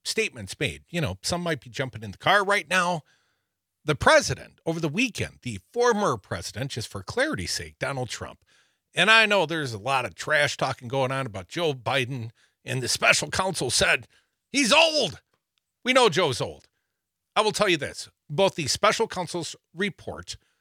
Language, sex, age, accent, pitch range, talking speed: English, male, 50-69, American, 130-215 Hz, 180 wpm